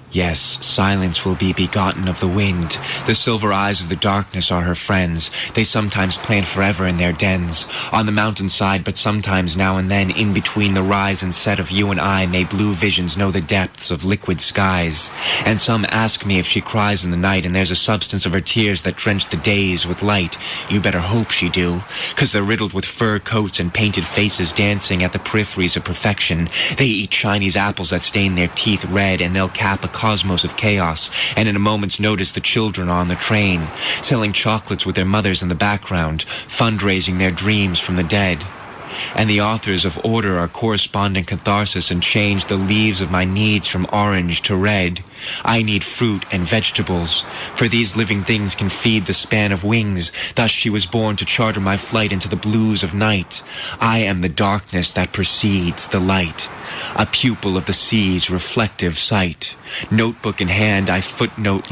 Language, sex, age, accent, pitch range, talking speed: English, male, 20-39, American, 90-105 Hz, 195 wpm